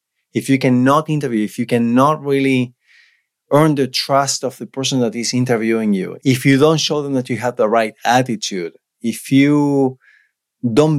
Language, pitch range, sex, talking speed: English, 115-145 Hz, male, 175 wpm